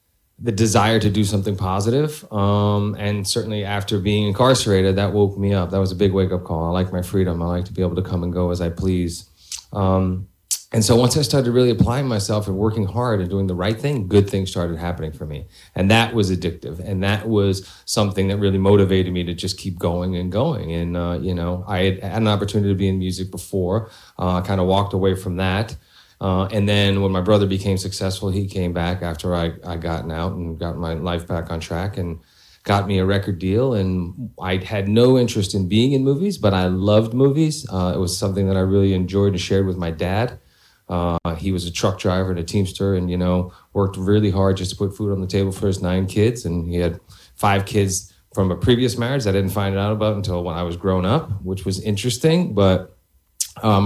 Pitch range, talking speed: 90-105 Hz, 230 wpm